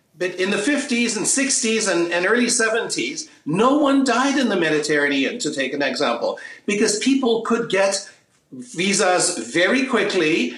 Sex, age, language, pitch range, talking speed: male, 50-69, English, 190-260 Hz, 155 wpm